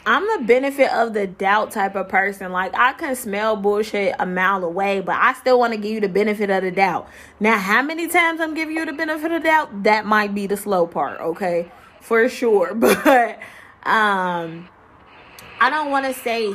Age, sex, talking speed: 20-39, female, 205 wpm